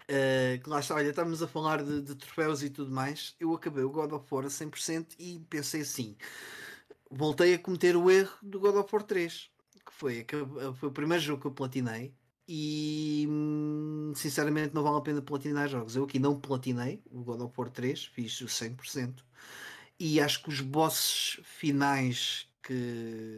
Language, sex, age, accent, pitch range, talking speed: Portuguese, male, 20-39, Portuguese, 125-150 Hz, 170 wpm